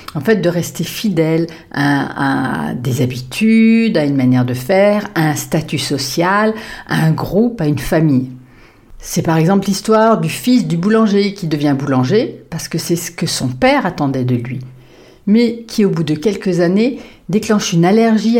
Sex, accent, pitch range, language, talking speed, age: female, French, 155-220 Hz, French, 180 wpm, 50-69